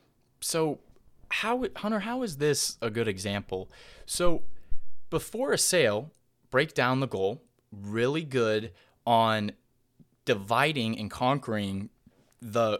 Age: 20-39